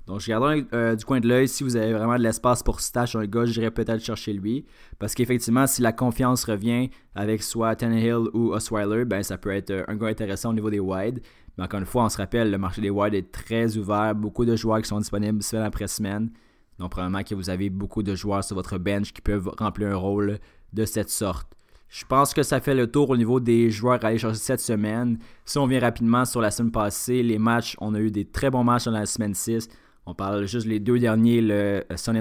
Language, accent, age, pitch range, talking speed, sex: French, Canadian, 20-39, 105-115 Hz, 240 wpm, male